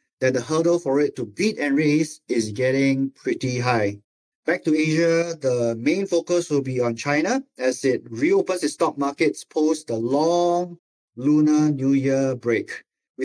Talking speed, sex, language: 170 wpm, male, English